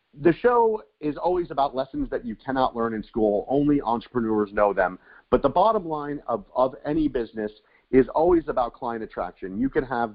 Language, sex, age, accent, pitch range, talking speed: English, male, 40-59, American, 110-150 Hz, 190 wpm